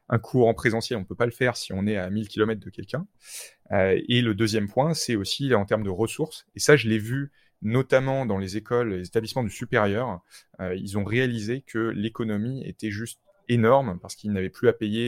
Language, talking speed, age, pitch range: French, 220 wpm, 20-39, 105-125 Hz